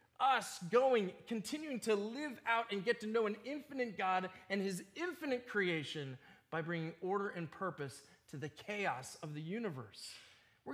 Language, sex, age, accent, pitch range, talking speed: English, male, 30-49, American, 140-205 Hz, 160 wpm